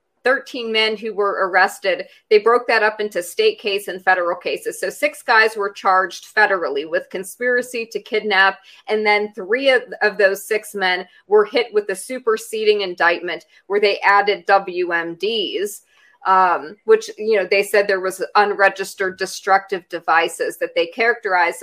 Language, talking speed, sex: English, 160 wpm, female